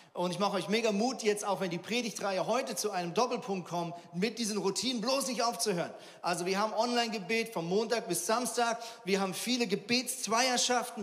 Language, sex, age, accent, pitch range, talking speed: German, male, 40-59, German, 160-220 Hz, 185 wpm